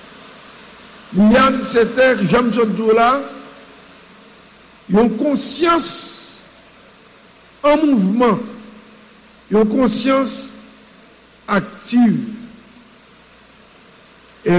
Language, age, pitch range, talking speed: English, 60-79, 225-265 Hz, 75 wpm